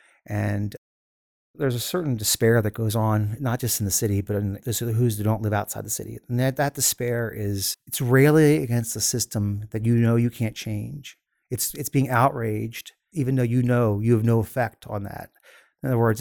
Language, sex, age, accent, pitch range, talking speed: English, male, 30-49, American, 110-130 Hz, 215 wpm